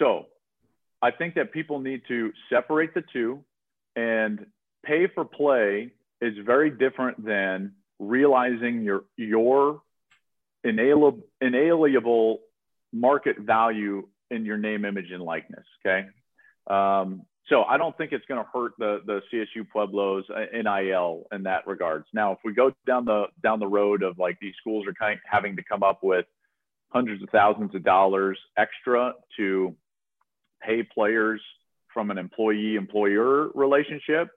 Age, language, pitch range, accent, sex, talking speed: 40-59, English, 100-120 Hz, American, male, 145 wpm